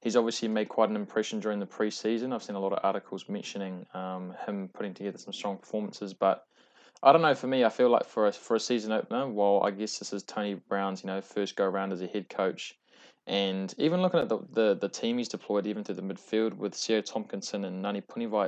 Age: 20-39